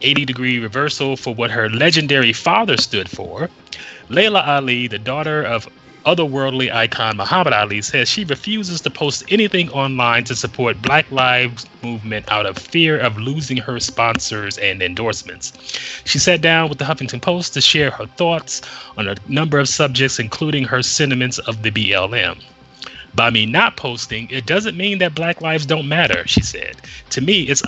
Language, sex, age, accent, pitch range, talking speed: English, male, 30-49, American, 115-155 Hz, 170 wpm